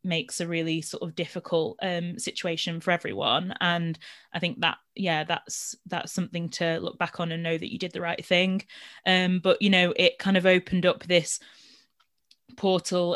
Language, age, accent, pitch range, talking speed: English, 20-39, British, 165-180 Hz, 185 wpm